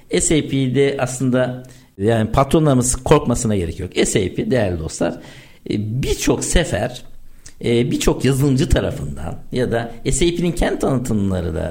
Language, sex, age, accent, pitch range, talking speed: Turkish, male, 60-79, native, 115-170 Hz, 110 wpm